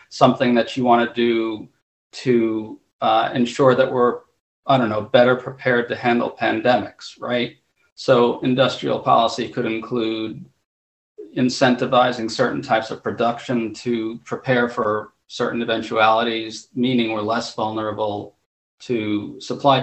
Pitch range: 115-130 Hz